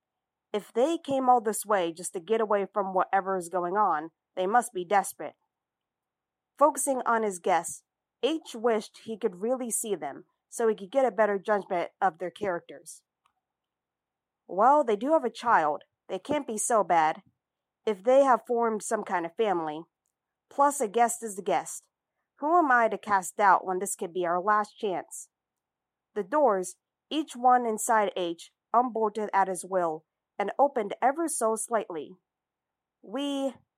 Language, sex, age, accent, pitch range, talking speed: English, female, 40-59, American, 190-245 Hz, 165 wpm